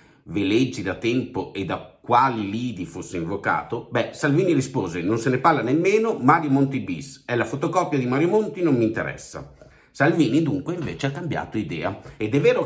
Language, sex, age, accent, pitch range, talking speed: Italian, male, 50-69, native, 115-160 Hz, 185 wpm